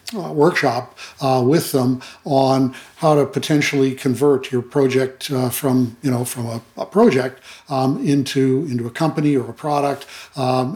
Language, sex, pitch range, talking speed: English, male, 130-150 Hz, 160 wpm